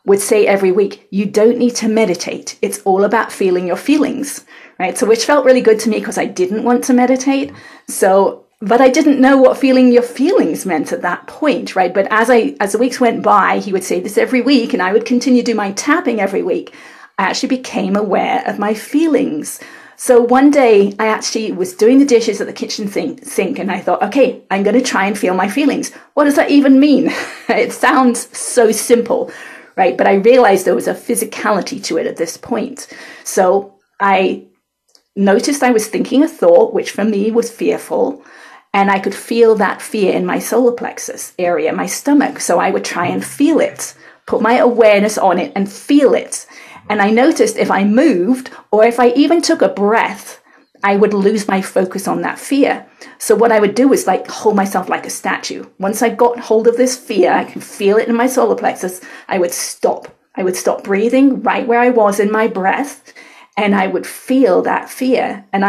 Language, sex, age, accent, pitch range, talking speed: English, female, 40-59, British, 205-260 Hz, 210 wpm